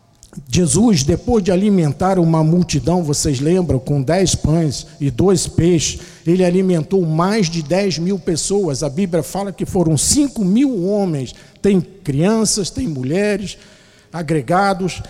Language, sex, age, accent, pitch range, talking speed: Portuguese, male, 50-69, Brazilian, 145-190 Hz, 135 wpm